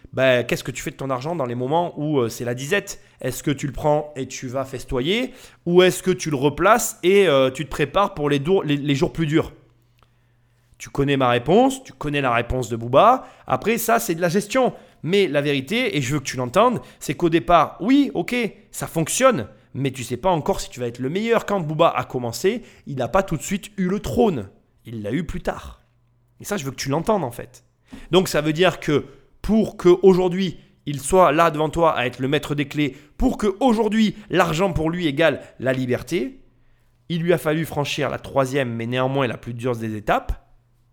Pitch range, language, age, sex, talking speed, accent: 125-185 Hz, French, 30-49, male, 225 wpm, French